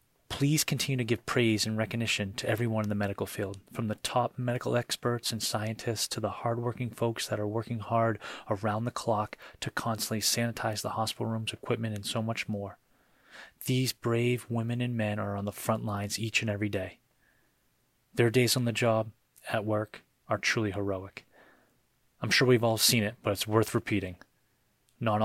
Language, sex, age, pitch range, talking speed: English, male, 30-49, 105-120 Hz, 185 wpm